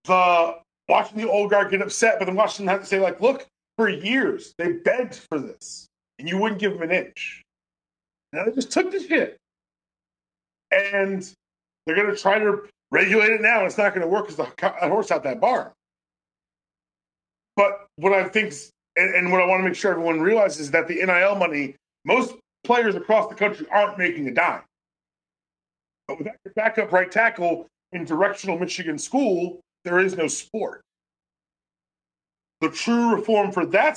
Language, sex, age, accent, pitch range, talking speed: English, male, 40-59, American, 145-205 Hz, 185 wpm